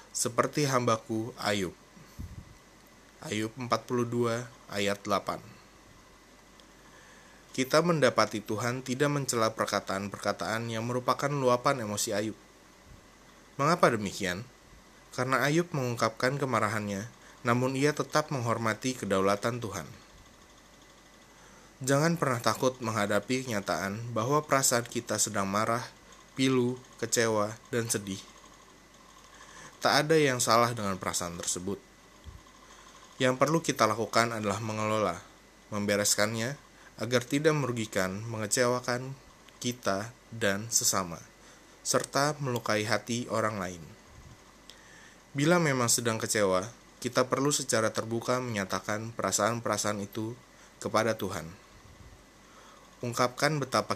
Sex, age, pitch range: male, 20-39, 105-125 Hz